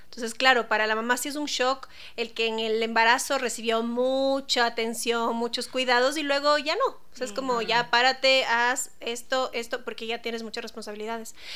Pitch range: 225-260 Hz